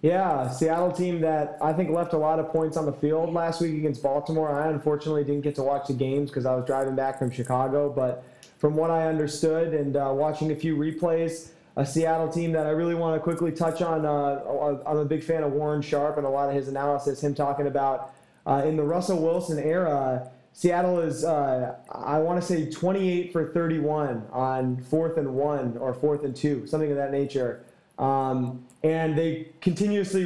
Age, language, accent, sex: 30-49, English, American, male